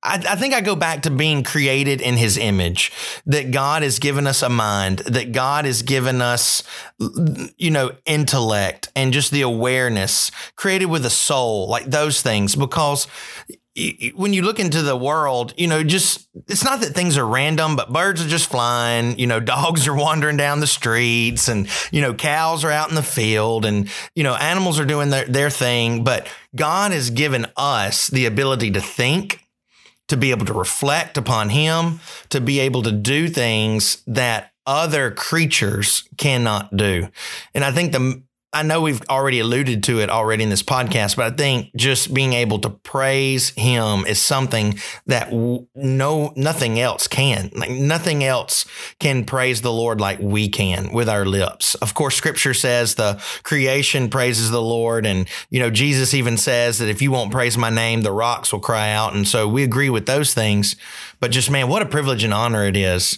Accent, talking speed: American, 190 wpm